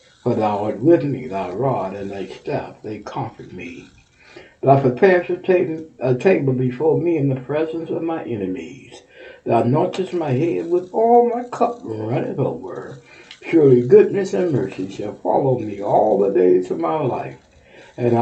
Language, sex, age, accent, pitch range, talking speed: English, male, 60-79, American, 120-165 Hz, 165 wpm